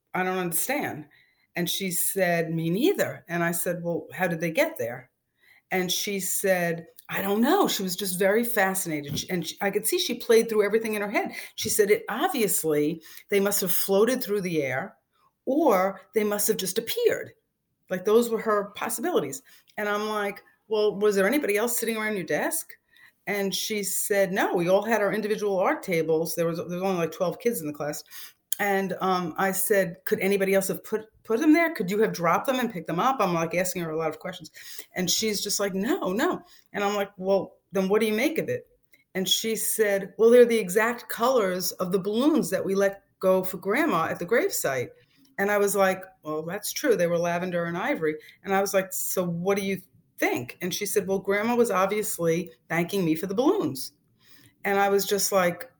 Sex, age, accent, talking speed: female, 50-69, American, 215 wpm